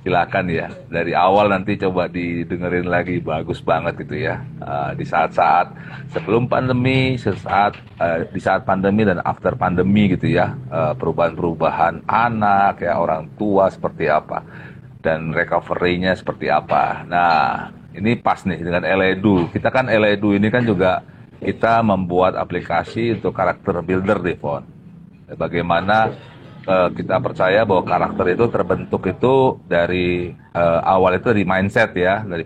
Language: Indonesian